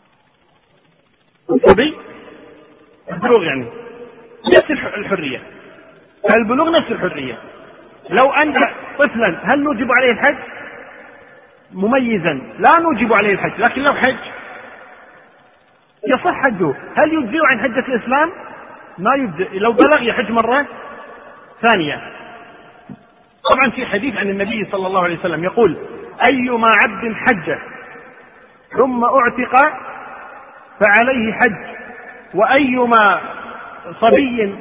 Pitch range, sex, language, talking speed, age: 230-275 Hz, male, Arabic, 95 wpm, 40-59